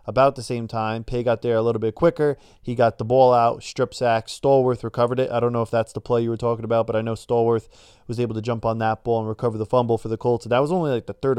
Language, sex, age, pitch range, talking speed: English, male, 20-39, 115-135 Hz, 300 wpm